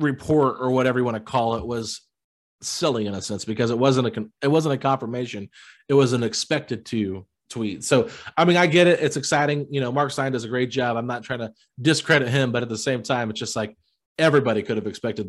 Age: 30-49